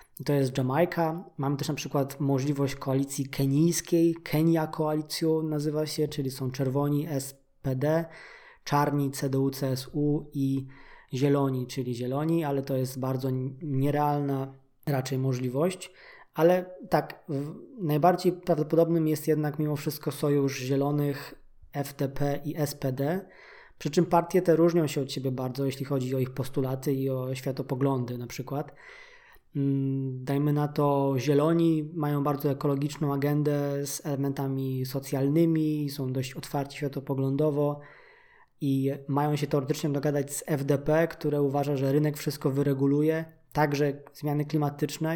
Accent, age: native, 20-39